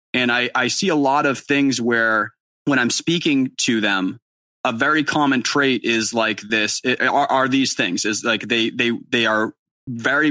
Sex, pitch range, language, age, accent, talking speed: male, 110-130 Hz, English, 20-39, American, 190 wpm